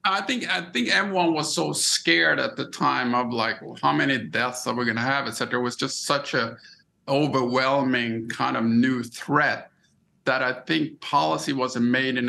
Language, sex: English, male